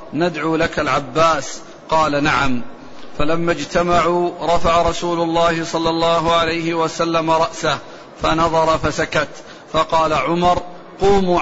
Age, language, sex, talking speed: 40-59, Arabic, male, 105 wpm